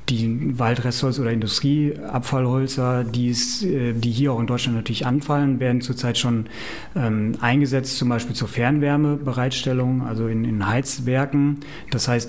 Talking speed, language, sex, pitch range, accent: 130 wpm, English, male, 115-130 Hz, German